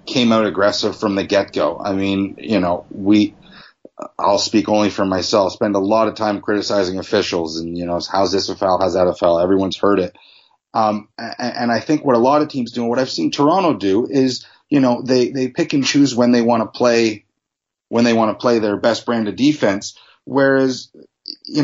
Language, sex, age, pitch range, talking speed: English, male, 30-49, 105-130 Hz, 220 wpm